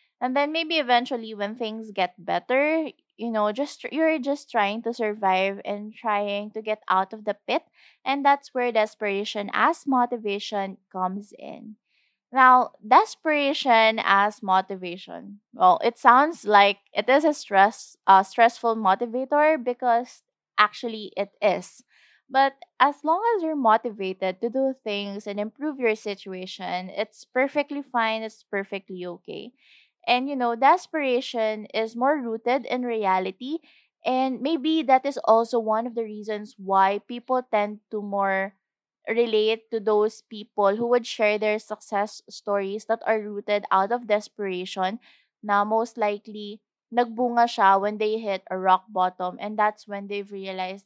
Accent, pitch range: Filipino, 200-250 Hz